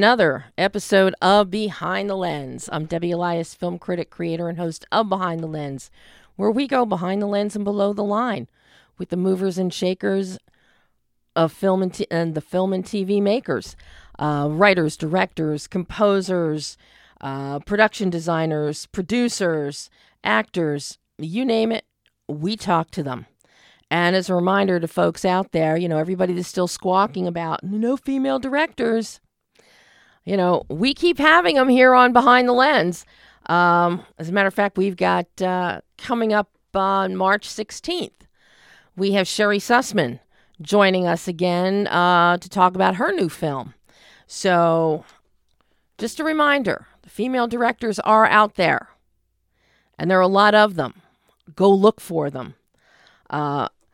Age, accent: 40-59, American